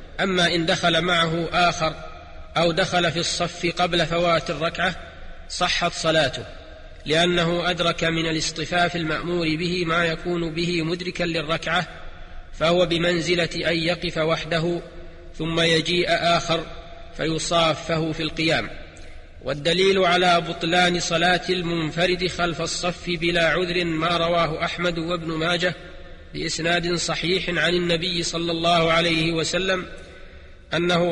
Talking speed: 115 wpm